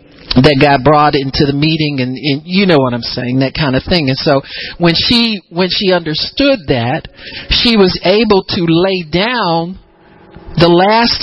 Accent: American